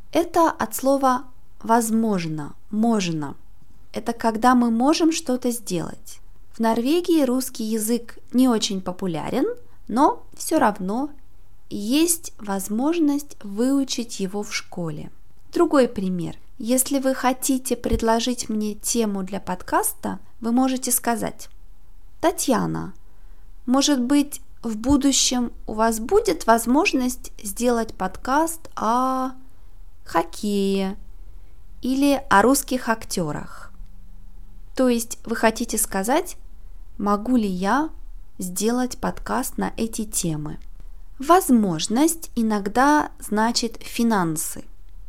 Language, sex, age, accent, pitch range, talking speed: Russian, female, 20-39, native, 205-270 Hz, 100 wpm